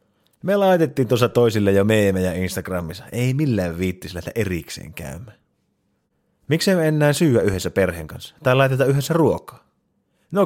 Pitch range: 95-140 Hz